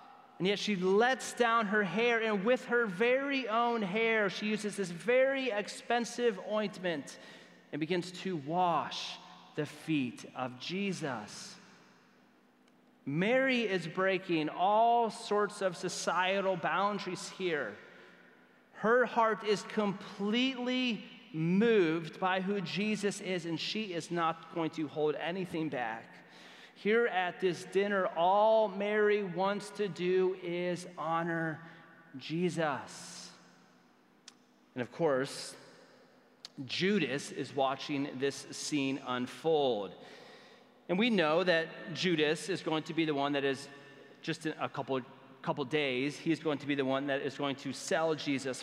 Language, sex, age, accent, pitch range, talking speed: English, male, 30-49, American, 150-210 Hz, 130 wpm